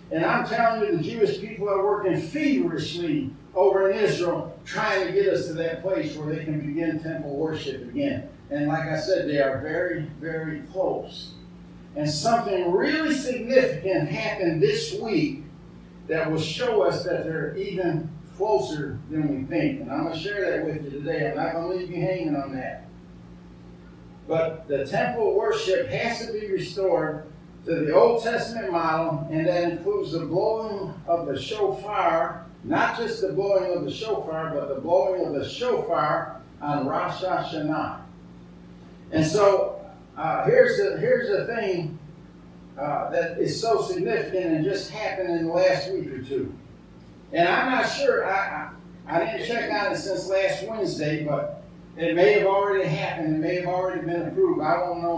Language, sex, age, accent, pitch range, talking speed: English, male, 50-69, American, 155-195 Hz, 175 wpm